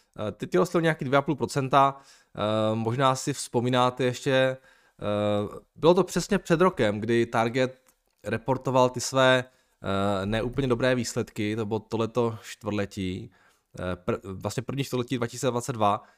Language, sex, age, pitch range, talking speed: Czech, male, 20-39, 105-130 Hz, 110 wpm